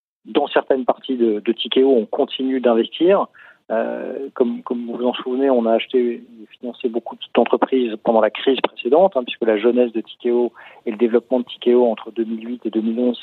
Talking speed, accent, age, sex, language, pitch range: 190 wpm, French, 40-59, male, French, 115-125 Hz